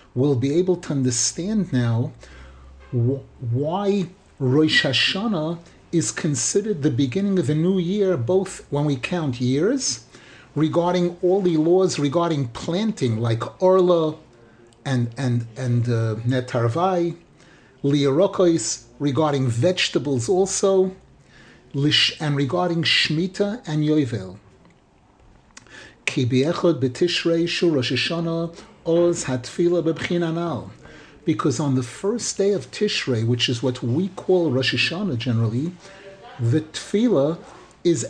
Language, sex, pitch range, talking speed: English, male, 125-180 Hz, 105 wpm